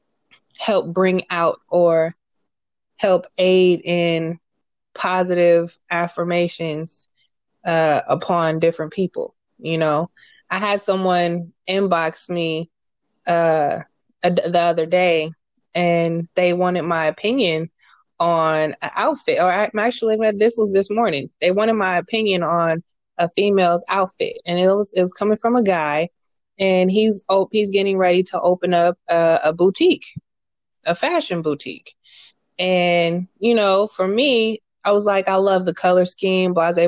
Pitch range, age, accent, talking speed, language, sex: 170-210 Hz, 20-39, American, 135 wpm, English, female